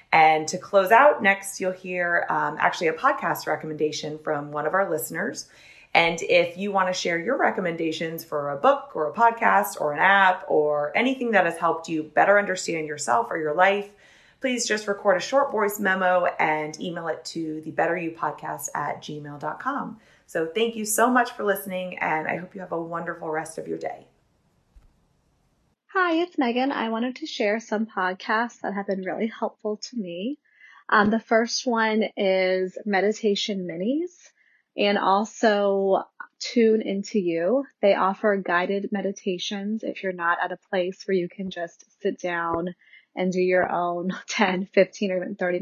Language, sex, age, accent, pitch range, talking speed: English, female, 30-49, American, 175-220 Hz, 175 wpm